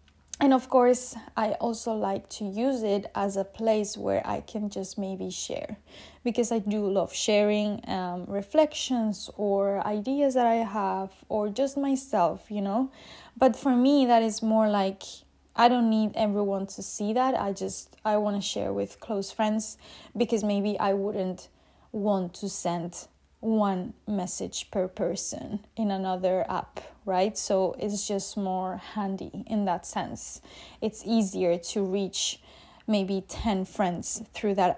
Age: 20-39